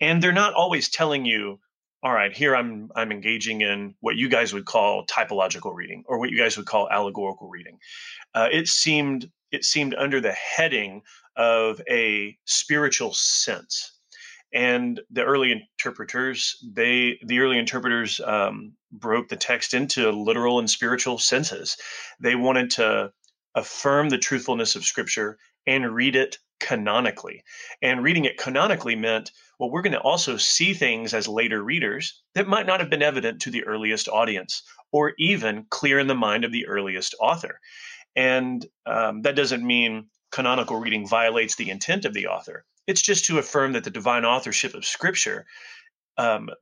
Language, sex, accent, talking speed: English, male, American, 165 wpm